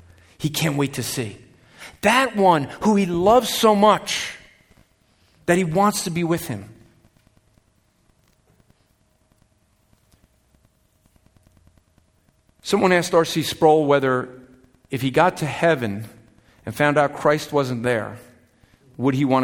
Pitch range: 120-185 Hz